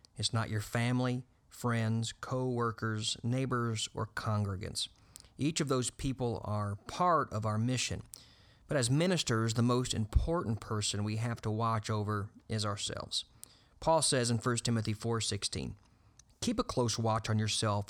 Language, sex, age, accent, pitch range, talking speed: English, male, 40-59, American, 105-125 Hz, 150 wpm